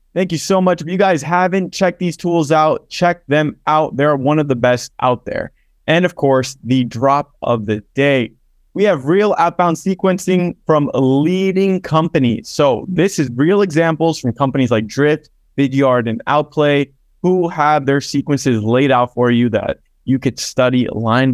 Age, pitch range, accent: 20-39, 125-175 Hz, American